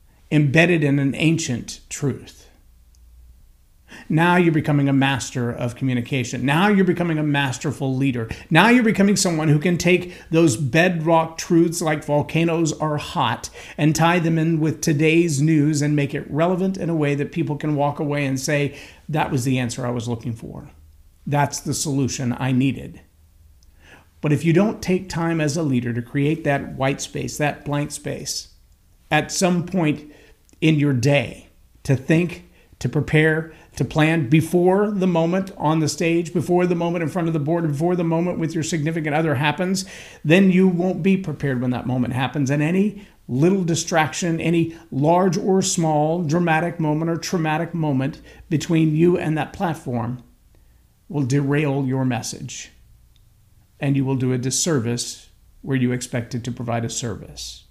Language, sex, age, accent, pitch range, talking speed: English, male, 50-69, American, 130-165 Hz, 165 wpm